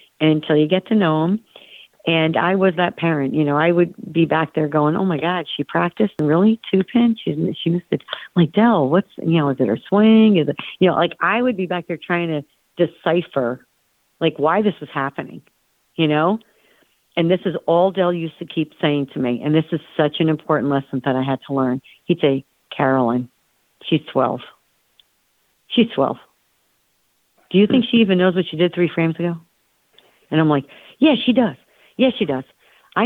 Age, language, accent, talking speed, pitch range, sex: 50-69, English, American, 210 wpm, 150-185 Hz, female